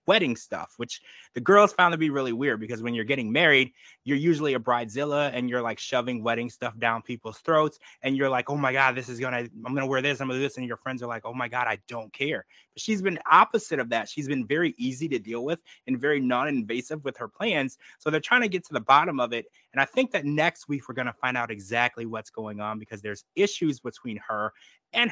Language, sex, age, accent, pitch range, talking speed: English, male, 20-39, American, 115-145 Hz, 260 wpm